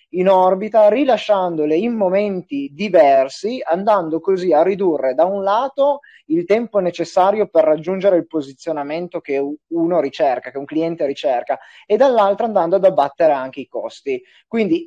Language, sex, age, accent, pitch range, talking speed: Italian, male, 20-39, native, 160-210 Hz, 145 wpm